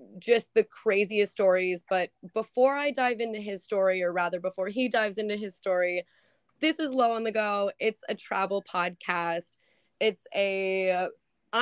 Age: 20-39